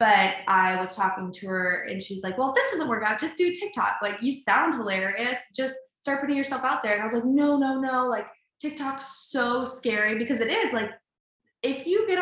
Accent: American